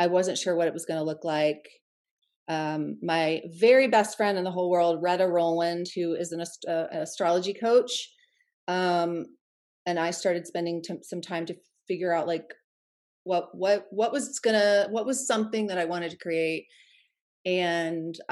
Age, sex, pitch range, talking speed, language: 30-49, female, 165-195 Hz, 180 wpm, English